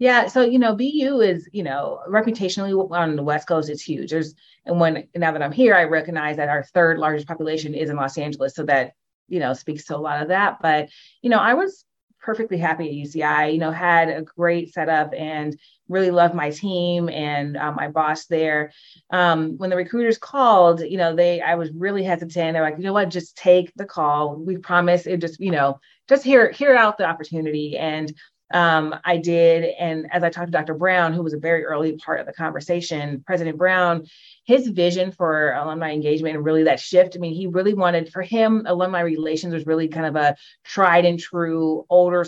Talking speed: 215 wpm